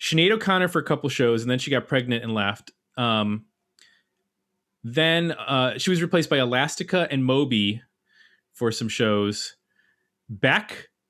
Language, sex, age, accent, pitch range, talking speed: English, male, 30-49, American, 130-175 Hz, 145 wpm